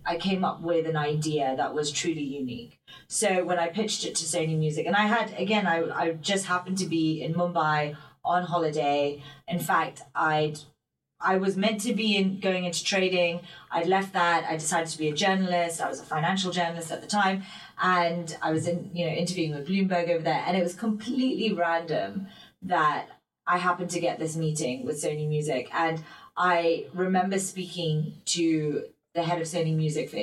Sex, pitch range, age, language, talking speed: female, 160-190 Hz, 30-49, English, 195 wpm